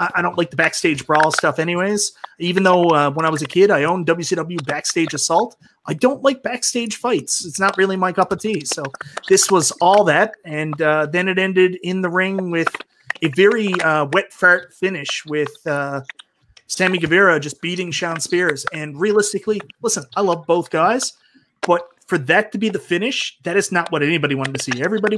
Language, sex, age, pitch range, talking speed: English, male, 30-49, 155-185 Hz, 200 wpm